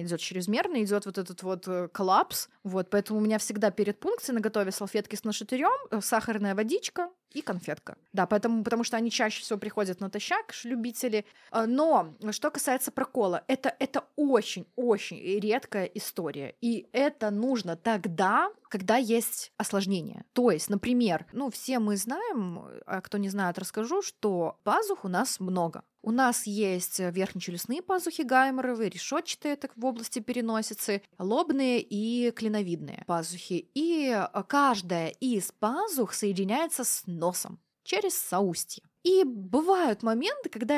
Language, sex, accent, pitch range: Russian, female, native, 200-260 Hz